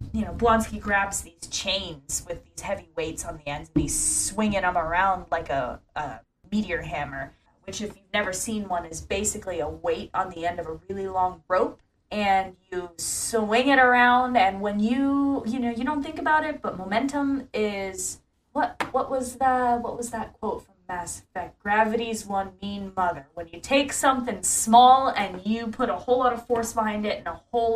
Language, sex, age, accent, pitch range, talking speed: English, female, 20-39, American, 185-235 Hz, 200 wpm